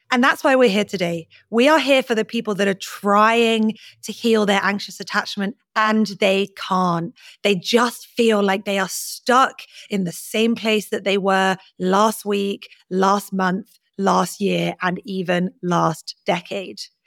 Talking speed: 165 wpm